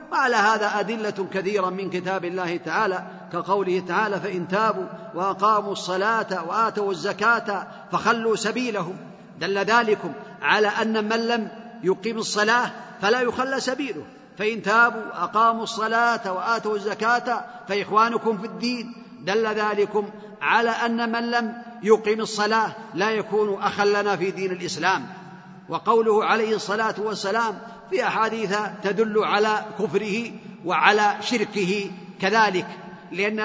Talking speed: 115 wpm